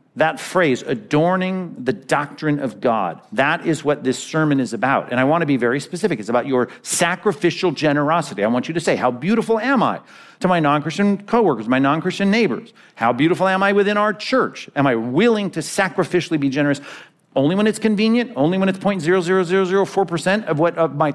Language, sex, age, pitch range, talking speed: English, male, 50-69, 135-185 Hz, 185 wpm